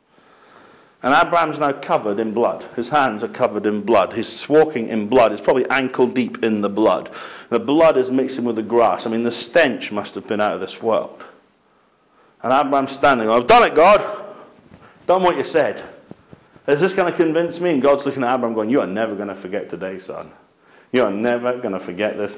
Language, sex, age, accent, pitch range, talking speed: English, male, 50-69, British, 110-135 Hz, 215 wpm